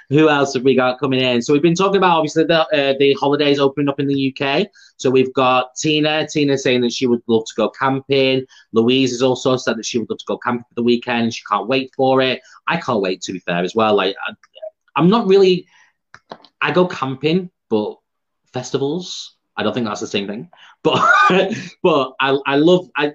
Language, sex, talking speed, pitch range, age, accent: English, male, 220 wpm, 115-150 Hz, 30-49, British